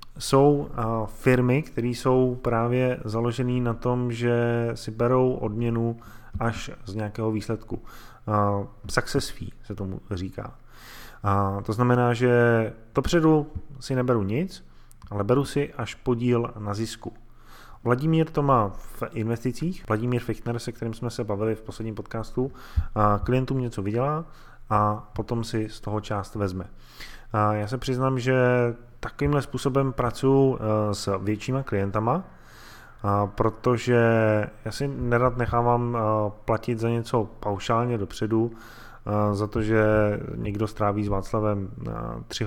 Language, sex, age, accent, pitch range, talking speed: Czech, male, 20-39, native, 105-125 Hz, 130 wpm